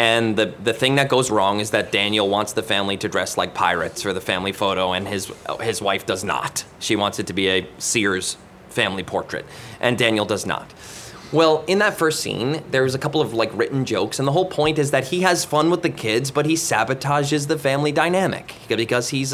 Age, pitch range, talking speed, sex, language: 20-39, 125-170 Hz, 225 wpm, male, English